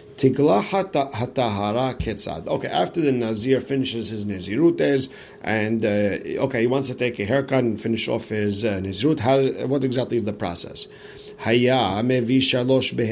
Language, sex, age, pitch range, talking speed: English, male, 50-69, 120-130 Hz, 125 wpm